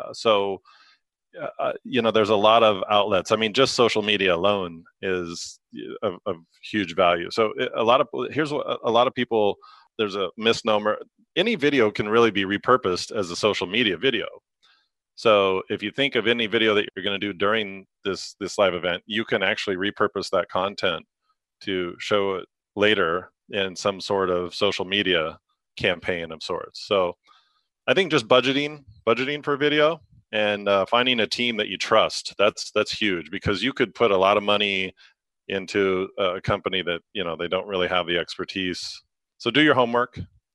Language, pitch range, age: English, 95-120 Hz, 30-49